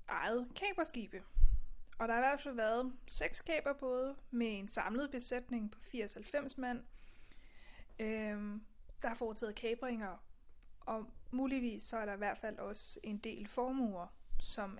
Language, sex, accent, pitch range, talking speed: Danish, female, native, 200-245 Hz, 145 wpm